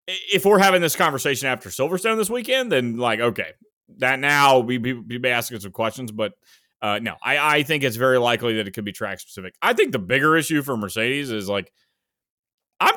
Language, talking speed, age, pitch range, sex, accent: English, 210 wpm, 30-49, 115-150 Hz, male, American